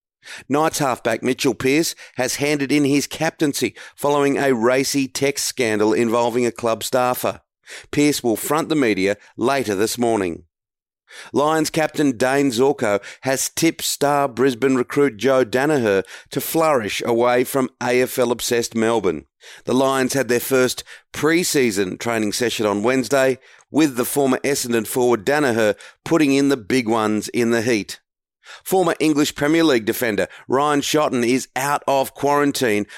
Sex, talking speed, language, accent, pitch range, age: male, 140 wpm, English, Australian, 115-140 Hz, 40-59